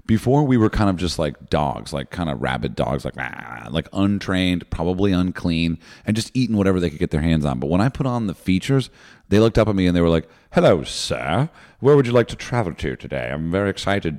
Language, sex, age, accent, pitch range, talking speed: English, male, 40-59, American, 75-110 Hz, 245 wpm